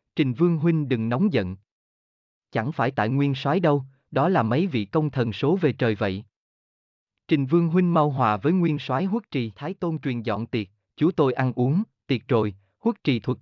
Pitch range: 115-160 Hz